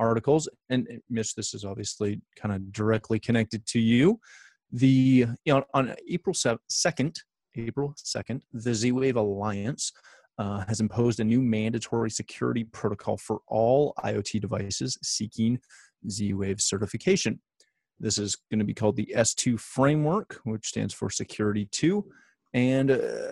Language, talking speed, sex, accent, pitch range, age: English, 140 wpm, male, American, 105-125 Hz, 30-49